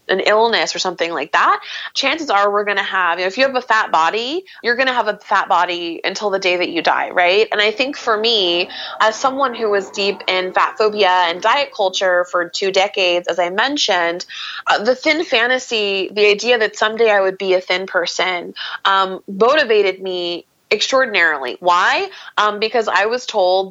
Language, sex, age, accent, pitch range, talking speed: English, female, 20-39, American, 180-225 Hz, 195 wpm